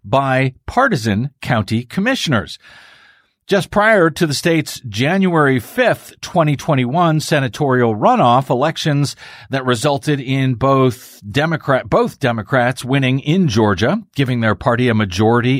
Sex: male